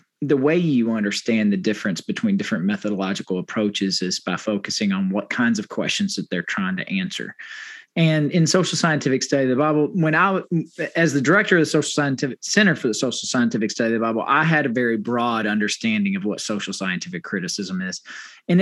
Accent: American